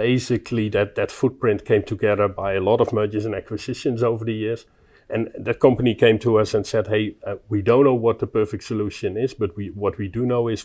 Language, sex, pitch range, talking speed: English, male, 95-115 Hz, 230 wpm